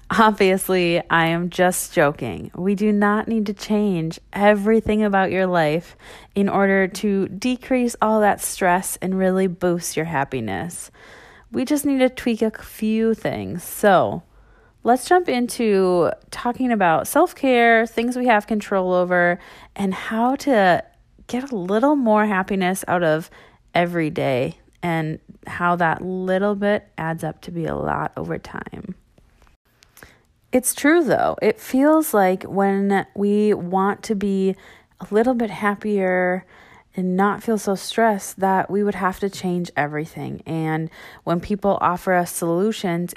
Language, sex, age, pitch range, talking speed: English, female, 30-49, 180-230 Hz, 145 wpm